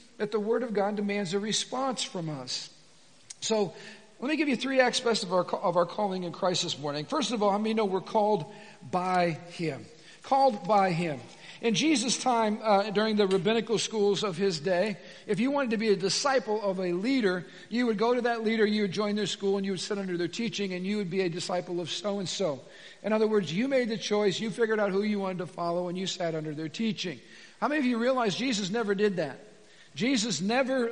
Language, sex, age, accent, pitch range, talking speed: English, male, 50-69, American, 190-230 Hz, 225 wpm